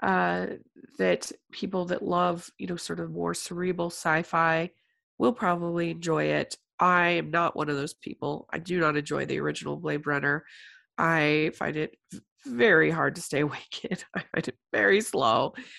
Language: English